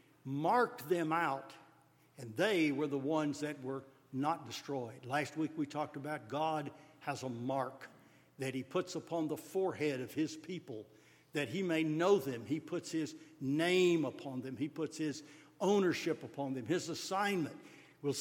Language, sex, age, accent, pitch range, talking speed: English, male, 60-79, American, 145-190 Hz, 165 wpm